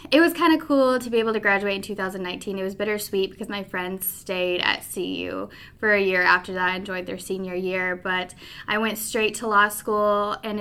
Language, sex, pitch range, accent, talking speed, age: English, female, 185-210 Hz, American, 220 wpm, 20-39